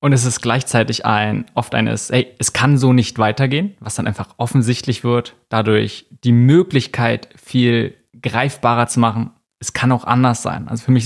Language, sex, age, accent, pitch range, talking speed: German, male, 20-39, German, 115-135 Hz, 180 wpm